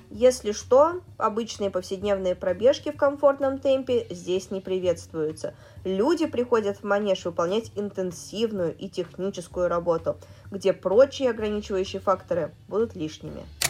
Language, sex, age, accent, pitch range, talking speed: Russian, female, 20-39, native, 195-270 Hz, 115 wpm